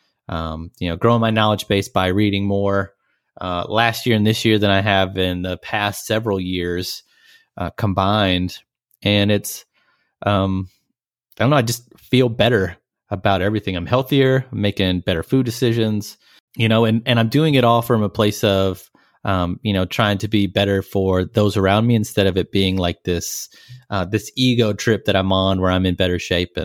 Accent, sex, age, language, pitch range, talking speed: American, male, 30-49, English, 95-115 Hz, 195 wpm